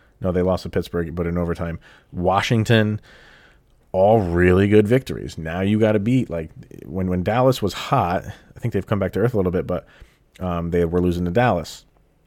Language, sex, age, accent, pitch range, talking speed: English, male, 30-49, American, 85-105 Hz, 200 wpm